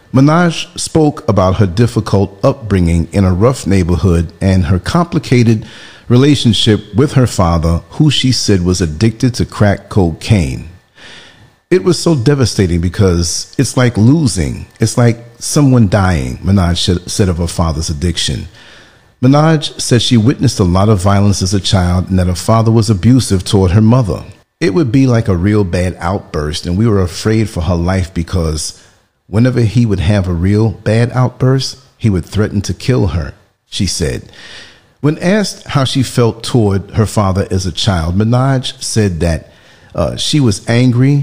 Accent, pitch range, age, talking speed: American, 95-125 Hz, 40-59, 165 wpm